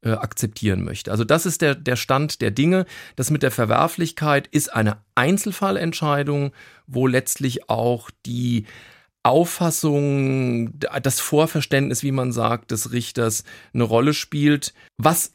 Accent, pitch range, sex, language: German, 115-150 Hz, male, German